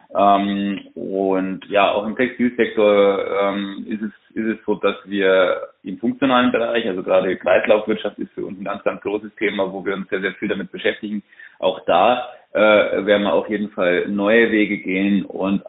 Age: 30-49